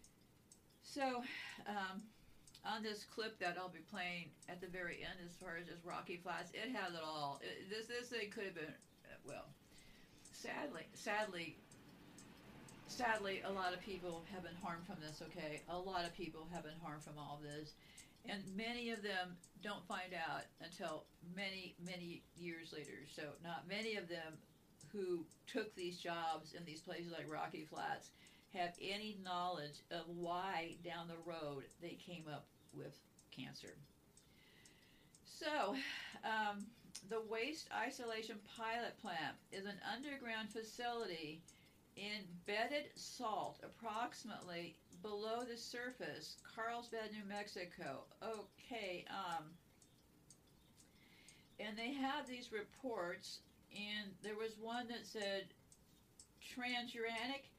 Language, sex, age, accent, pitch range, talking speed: English, female, 50-69, American, 170-220 Hz, 135 wpm